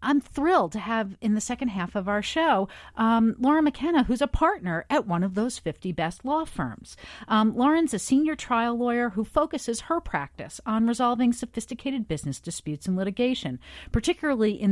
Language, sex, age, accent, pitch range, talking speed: English, female, 40-59, American, 170-245 Hz, 180 wpm